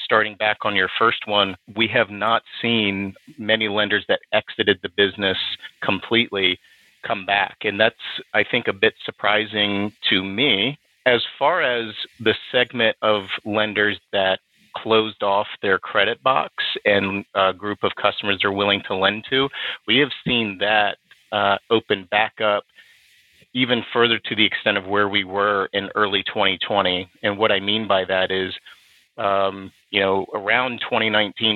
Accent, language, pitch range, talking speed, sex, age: American, English, 95-110 Hz, 160 wpm, male, 40-59